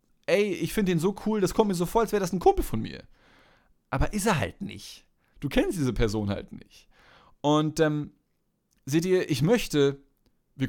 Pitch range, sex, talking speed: 135-190 Hz, male, 200 wpm